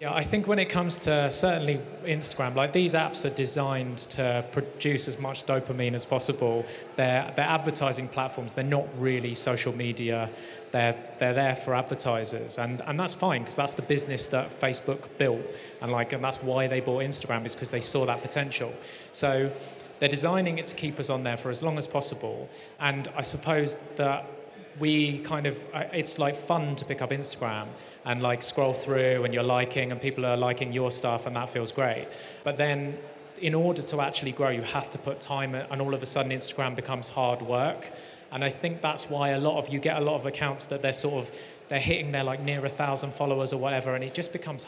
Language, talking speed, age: English, 210 wpm, 30-49